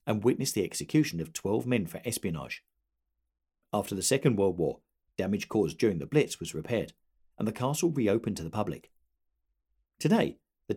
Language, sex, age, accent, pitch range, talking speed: English, male, 50-69, British, 80-120 Hz, 165 wpm